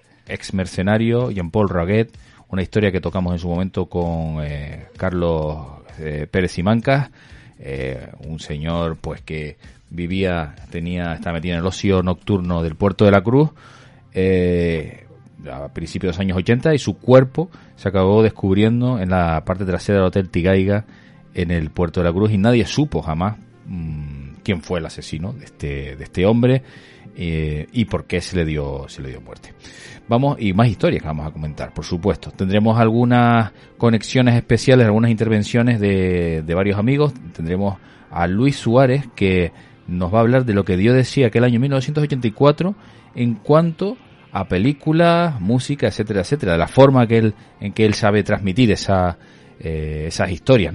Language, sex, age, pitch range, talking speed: Spanish, male, 30-49, 85-120 Hz, 170 wpm